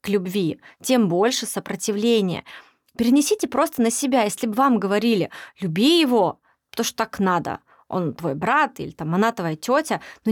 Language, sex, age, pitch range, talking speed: Russian, female, 20-39, 200-260 Hz, 150 wpm